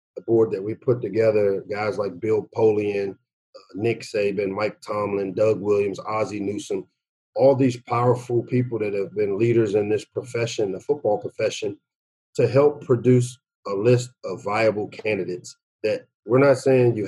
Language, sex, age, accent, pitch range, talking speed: English, male, 40-59, American, 110-135 Hz, 160 wpm